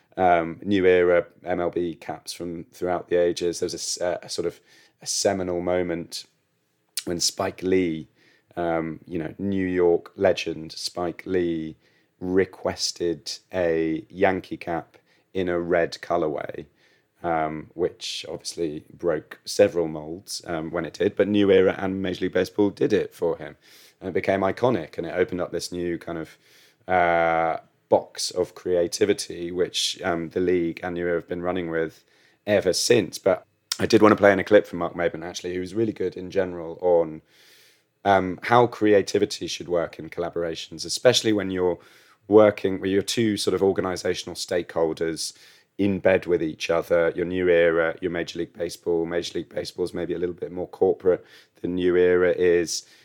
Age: 30-49